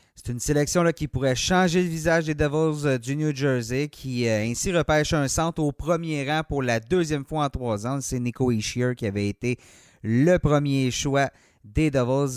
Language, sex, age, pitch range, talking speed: French, male, 30-49, 125-160 Hz, 205 wpm